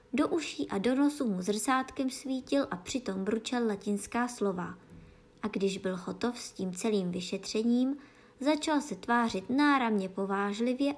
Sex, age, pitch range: male, 20-39, 195-255 Hz